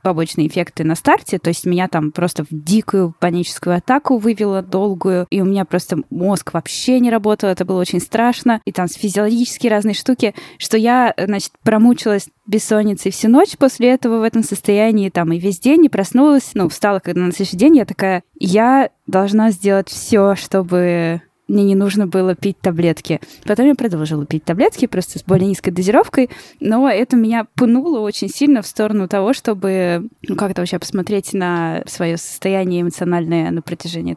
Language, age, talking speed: Russian, 10-29, 175 wpm